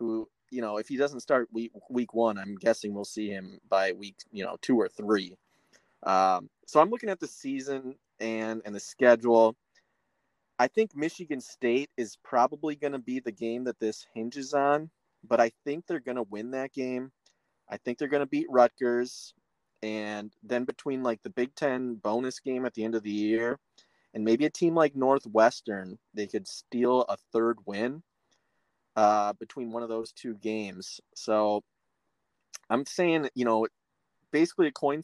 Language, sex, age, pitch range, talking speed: English, male, 30-49, 110-135 Hz, 180 wpm